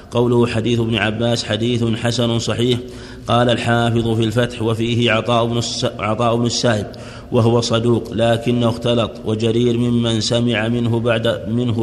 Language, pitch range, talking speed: Arabic, 115-120 Hz, 130 wpm